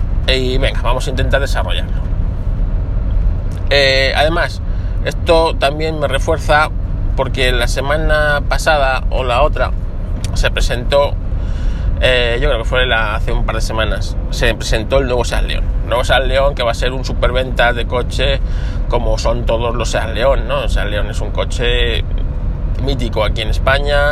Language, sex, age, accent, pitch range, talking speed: Spanish, male, 20-39, Spanish, 90-125 Hz, 165 wpm